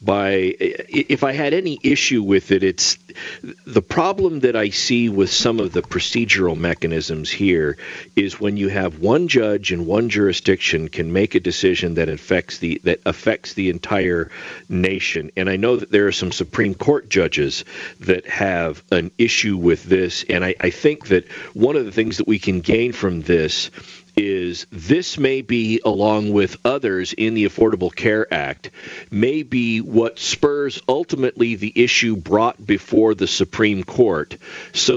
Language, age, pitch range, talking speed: English, 50-69, 100-155 Hz, 170 wpm